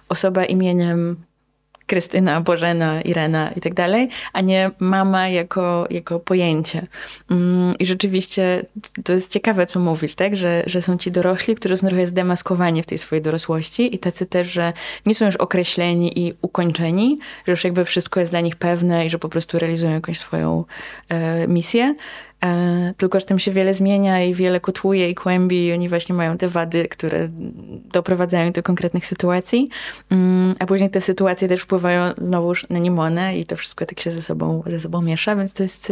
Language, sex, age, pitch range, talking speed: Polish, female, 20-39, 175-200 Hz, 175 wpm